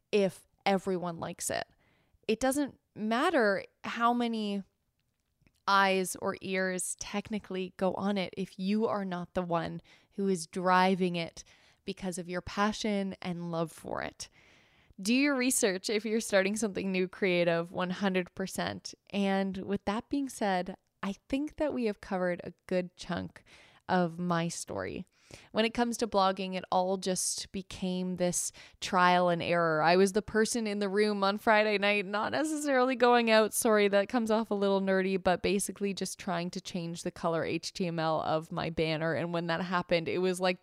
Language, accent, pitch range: English, American, 175-210 Hz